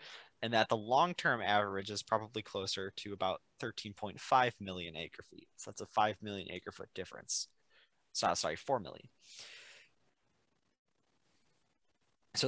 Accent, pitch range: American, 100-125 Hz